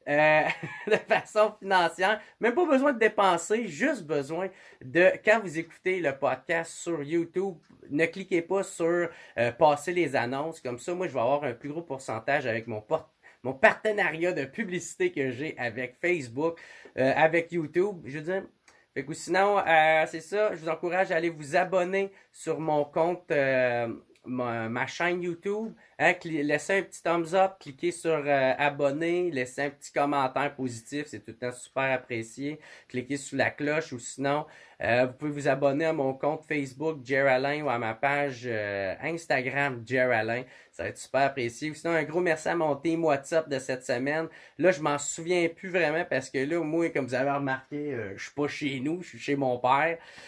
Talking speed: 190 wpm